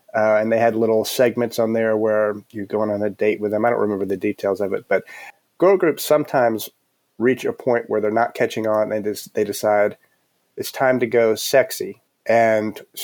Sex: male